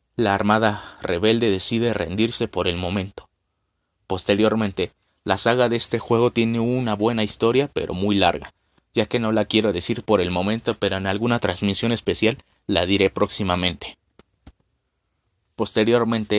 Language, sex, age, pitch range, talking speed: Spanish, male, 30-49, 100-115 Hz, 145 wpm